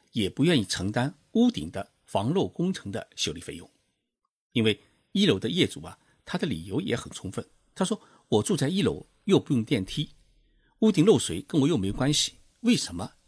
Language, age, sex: Chinese, 50-69, male